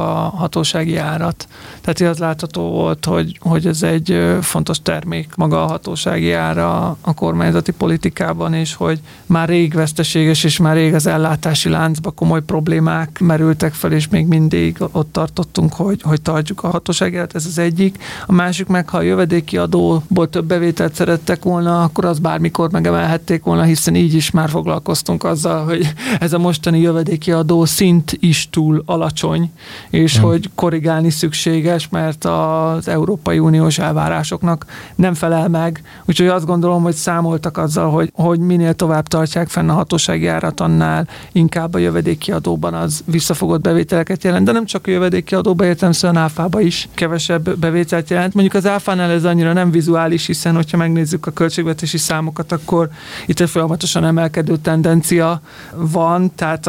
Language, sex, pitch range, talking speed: Hungarian, male, 160-175 Hz, 160 wpm